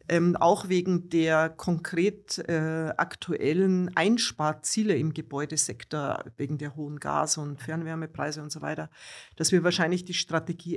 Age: 50-69